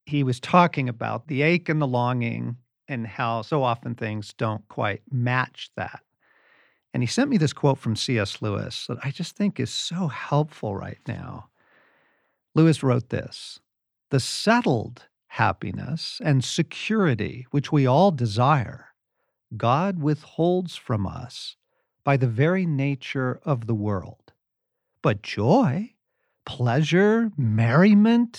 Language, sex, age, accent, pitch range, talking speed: English, male, 50-69, American, 125-175 Hz, 135 wpm